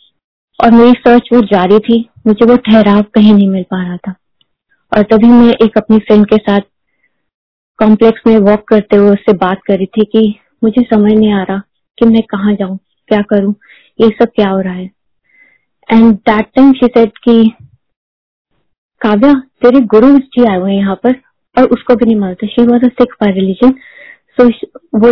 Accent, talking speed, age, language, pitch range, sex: native, 175 wpm, 20-39, Hindi, 210-250 Hz, female